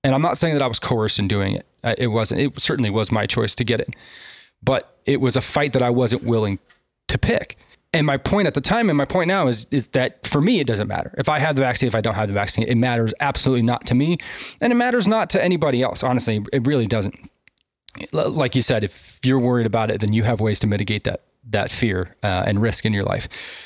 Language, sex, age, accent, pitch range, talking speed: English, male, 20-39, American, 115-145 Hz, 255 wpm